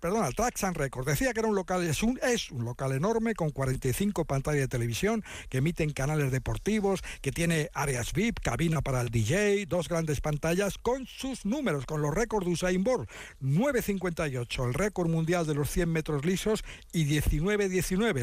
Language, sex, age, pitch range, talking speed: Spanish, male, 60-79, 145-195 Hz, 180 wpm